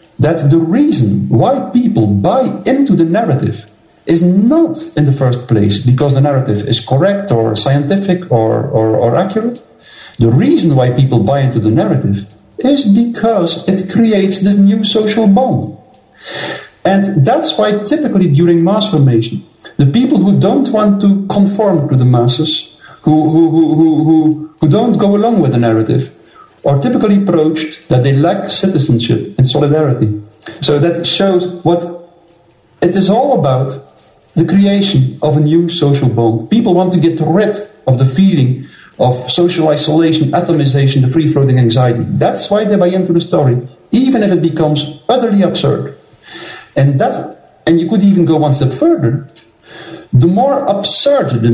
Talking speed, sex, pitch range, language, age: 160 wpm, male, 130-195 Hz, English, 50-69